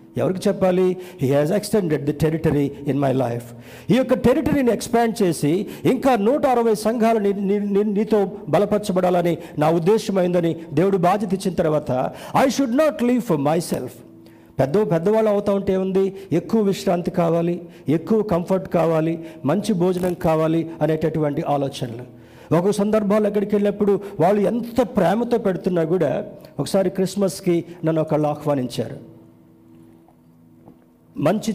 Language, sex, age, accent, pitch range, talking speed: Telugu, male, 50-69, native, 140-195 Hz, 125 wpm